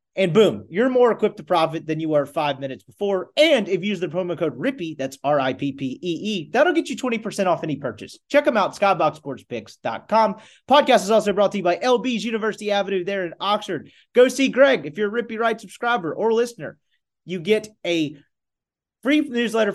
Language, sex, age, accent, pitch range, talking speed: English, male, 30-49, American, 155-230 Hz, 190 wpm